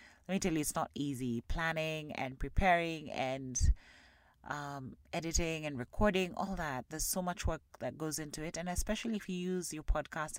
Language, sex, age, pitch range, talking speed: English, female, 30-49, 145-185 Hz, 185 wpm